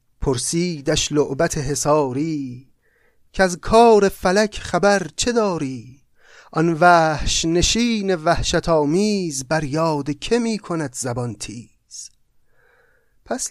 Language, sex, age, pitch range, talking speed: Persian, male, 30-49, 130-170 Hz, 100 wpm